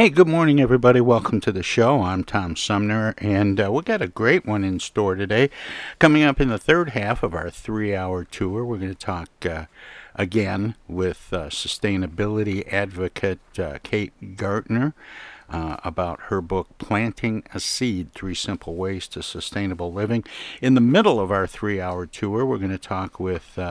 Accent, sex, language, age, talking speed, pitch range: American, male, English, 60-79, 175 wpm, 95-120 Hz